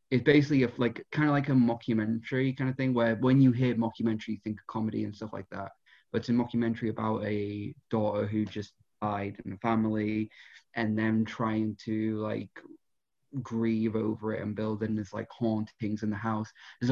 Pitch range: 110-125 Hz